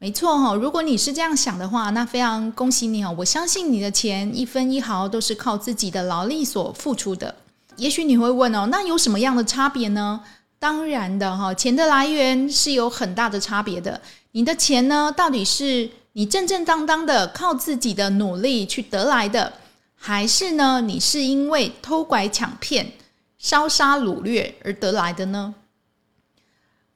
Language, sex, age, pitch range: Chinese, female, 20-39, 210-295 Hz